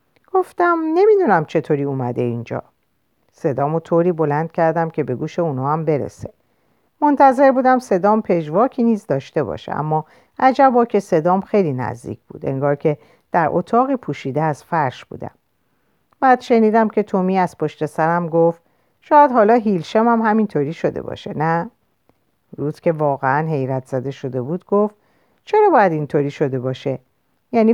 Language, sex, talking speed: Persian, female, 145 wpm